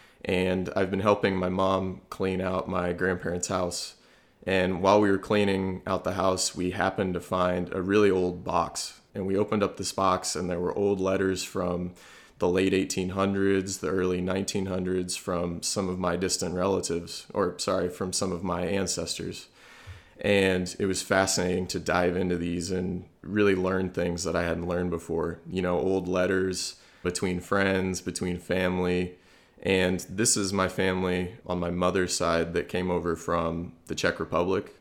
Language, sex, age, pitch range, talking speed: English, male, 20-39, 90-95 Hz, 170 wpm